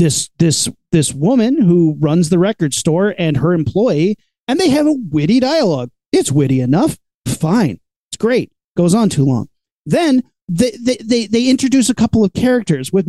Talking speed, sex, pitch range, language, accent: 180 wpm, male, 175-250 Hz, English, American